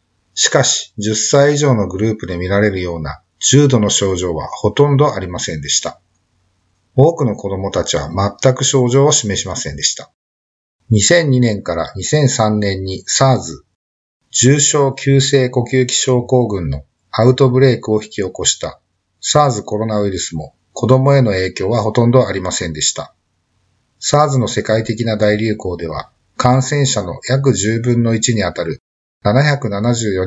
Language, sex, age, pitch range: Japanese, male, 50-69, 95-130 Hz